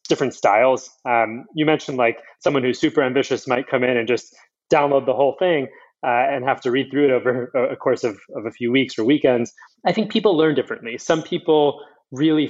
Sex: male